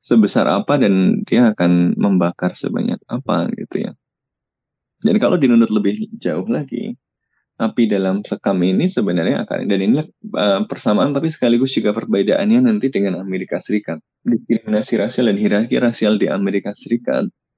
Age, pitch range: 20-39, 90-110 Hz